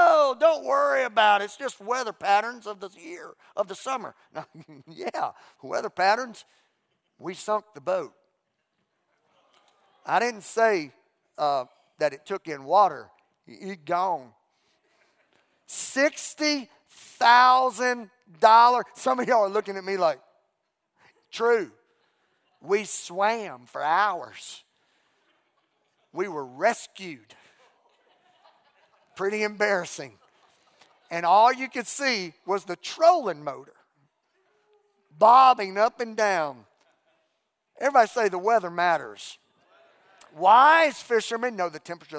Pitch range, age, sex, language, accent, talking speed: 180-245 Hz, 50-69, male, English, American, 105 wpm